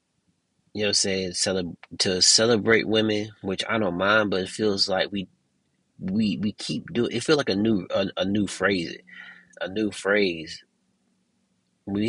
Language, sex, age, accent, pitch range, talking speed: English, male, 30-49, American, 95-110 Hz, 175 wpm